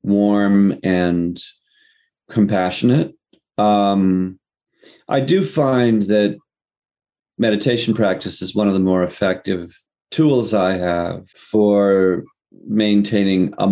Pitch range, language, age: 90-120 Hz, English, 40-59